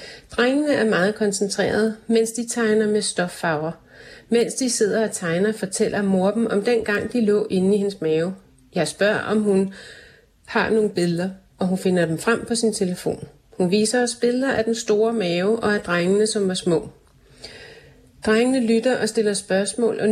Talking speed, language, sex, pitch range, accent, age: 180 wpm, Danish, female, 180-225 Hz, native, 30-49